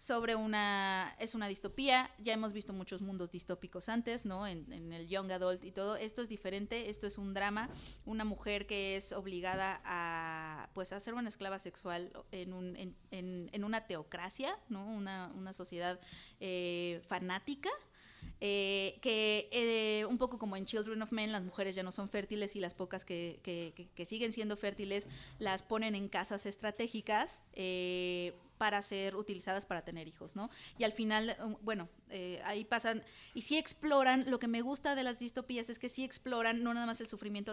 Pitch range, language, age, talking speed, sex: 185-225 Hz, Spanish, 30-49, 185 wpm, female